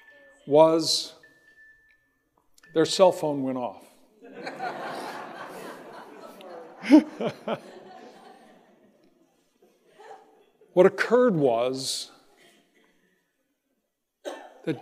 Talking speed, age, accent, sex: 40 wpm, 60-79, American, male